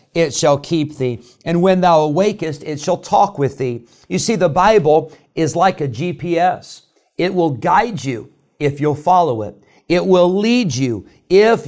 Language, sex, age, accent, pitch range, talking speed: English, male, 50-69, American, 135-175 Hz, 175 wpm